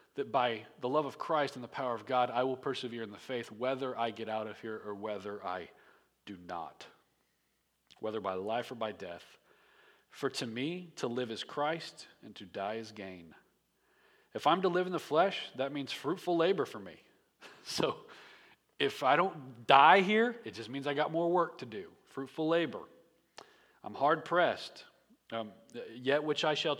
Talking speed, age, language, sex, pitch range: 190 wpm, 40-59, English, male, 110-140 Hz